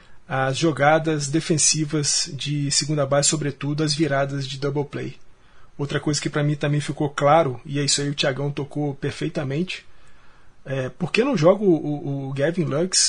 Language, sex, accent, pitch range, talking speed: Portuguese, male, Brazilian, 140-175 Hz, 170 wpm